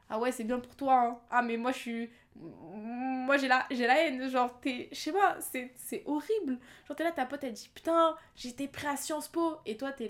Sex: female